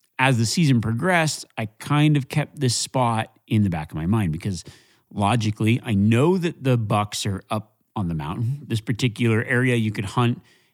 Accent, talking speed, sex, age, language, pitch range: American, 190 wpm, male, 30-49, English, 105-130 Hz